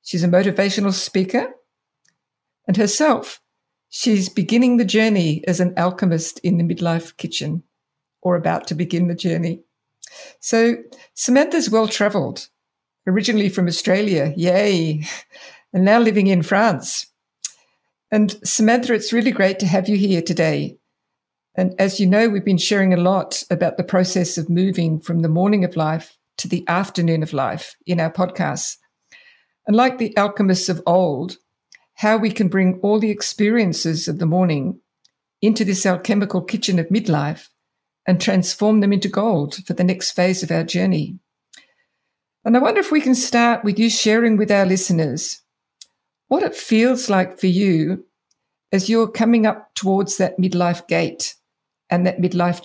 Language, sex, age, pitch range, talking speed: English, female, 50-69, 175-215 Hz, 155 wpm